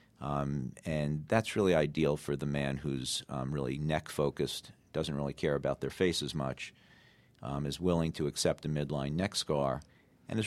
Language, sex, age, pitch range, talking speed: English, male, 50-69, 70-85 Hz, 180 wpm